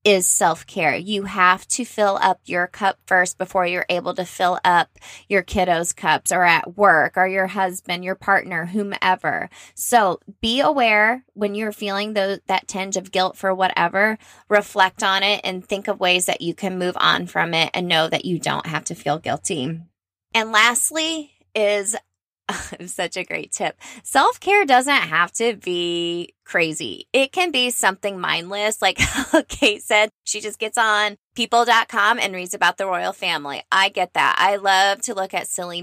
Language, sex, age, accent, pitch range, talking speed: English, female, 20-39, American, 175-215 Hz, 175 wpm